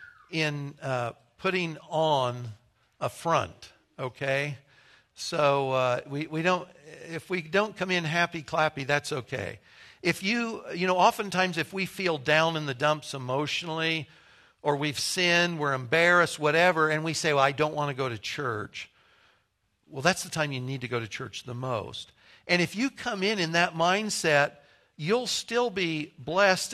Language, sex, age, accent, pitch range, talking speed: English, male, 60-79, American, 145-175 Hz, 180 wpm